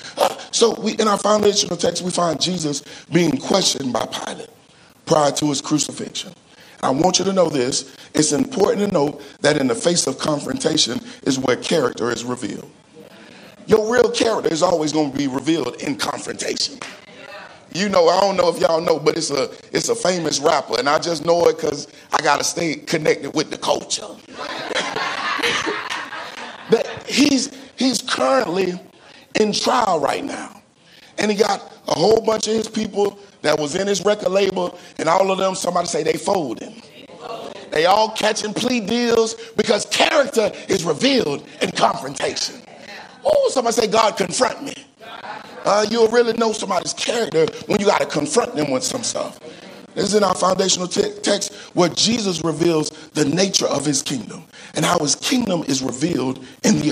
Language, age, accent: English, 40-59, American